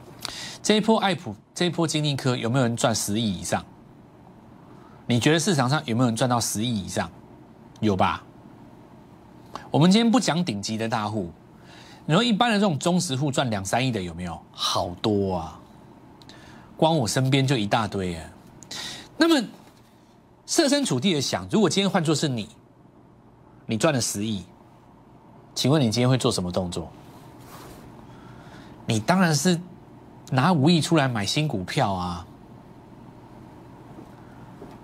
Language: Chinese